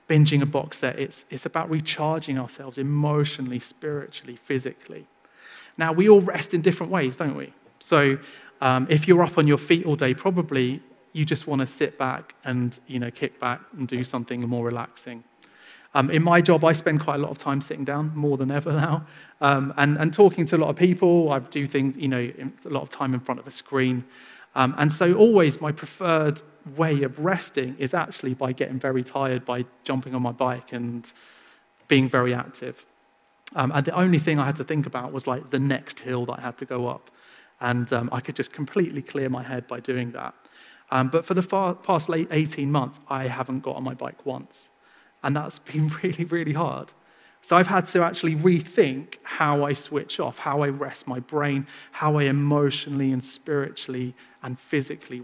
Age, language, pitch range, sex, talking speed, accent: 30-49, English, 130-155 Hz, male, 205 wpm, British